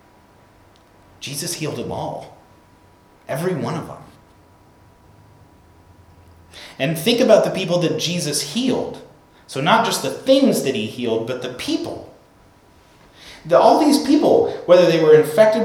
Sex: male